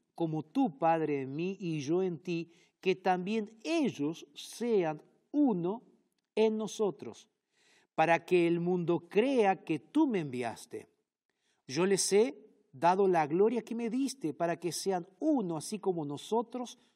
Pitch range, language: 155-210 Hz, Spanish